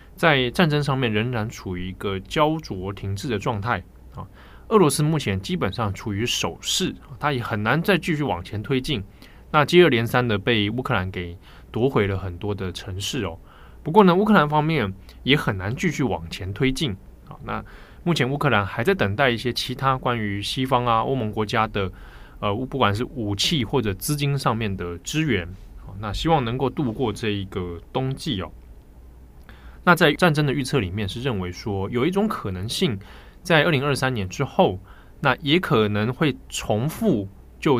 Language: Chinese